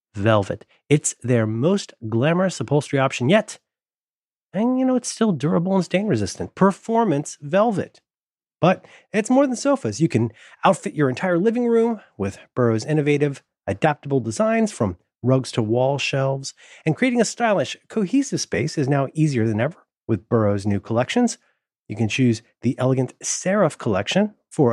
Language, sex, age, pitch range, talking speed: English, male, 30-49, 120-185 Hz, 155 wpm